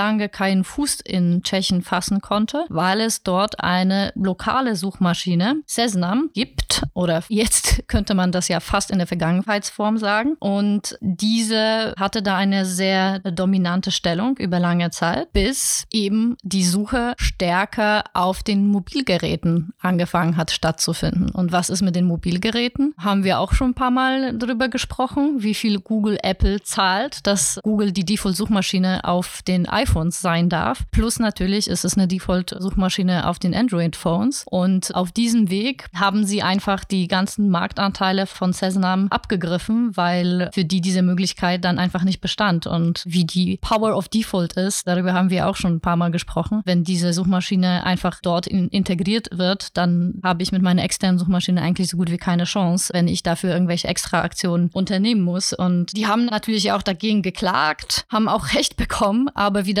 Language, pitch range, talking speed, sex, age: German, 180-210 Hz, 165 wpm, female, 30-49